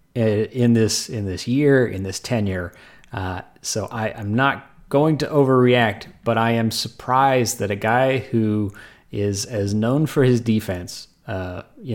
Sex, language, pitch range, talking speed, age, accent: male, English, 110-135 Hz, 160 wpm, 30-49, American